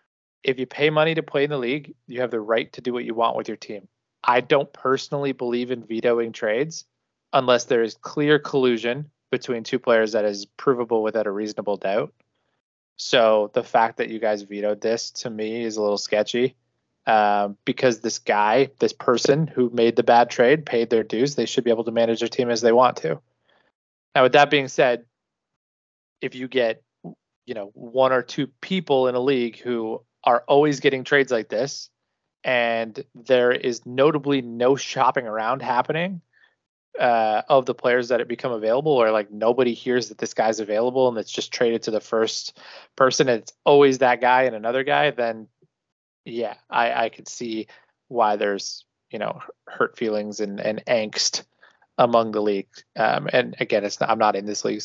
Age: 20-39